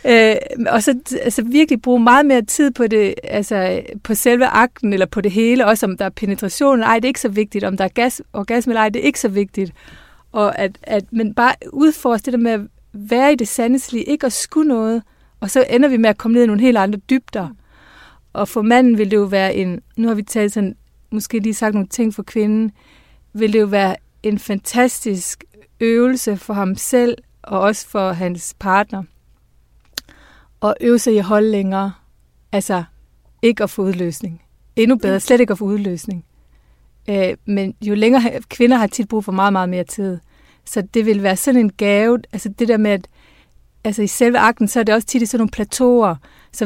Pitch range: 200-235 Hz